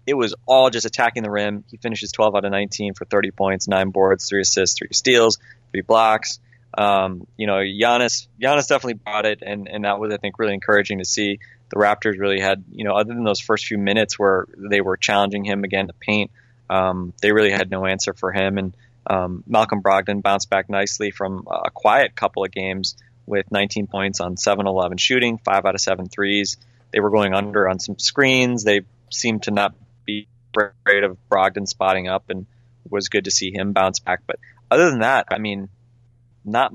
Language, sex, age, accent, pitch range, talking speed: English, male, 20-39, American, 100-120 Hz, 205 wpm